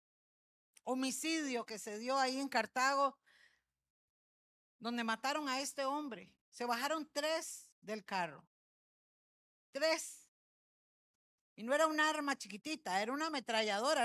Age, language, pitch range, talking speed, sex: 50-69, Spanish, 220-310 Hz, 115 wpm, female